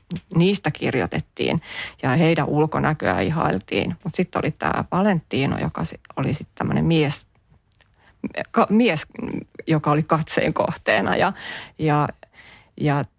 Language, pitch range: Finnish, 145-165 Hz